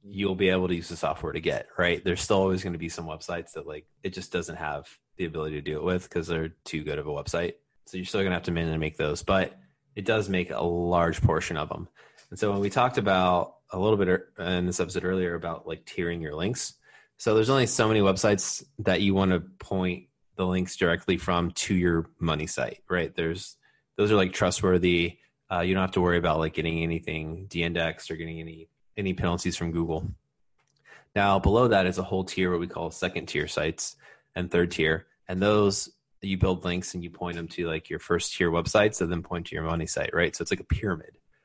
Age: 20-39